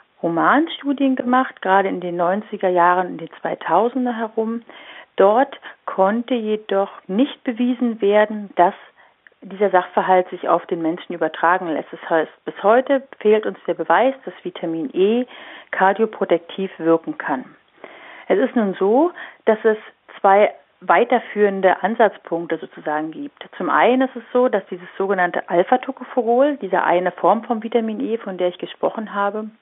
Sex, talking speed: female, 145 wpm